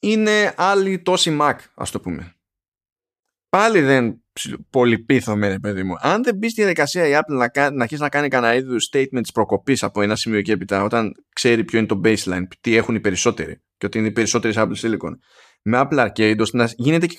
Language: Greek